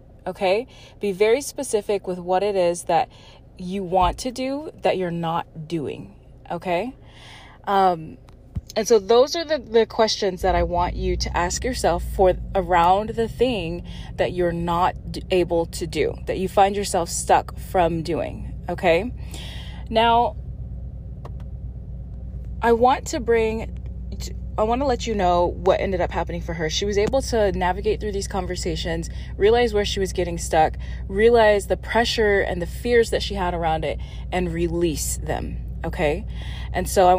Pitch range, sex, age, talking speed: 165-215 Hz, female, 20-39, 160 wpm